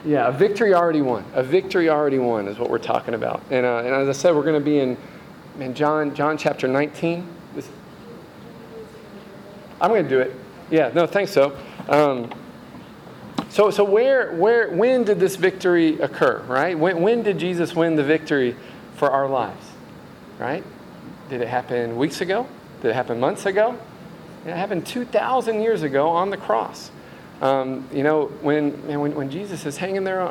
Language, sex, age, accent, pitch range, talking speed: English, male, 40-59, American, 140-180 Hz, 180 wpm